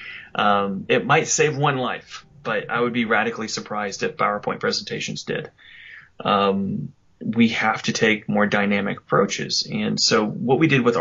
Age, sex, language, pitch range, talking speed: 30-49, male, English, 105-135 Hz, 165 wpm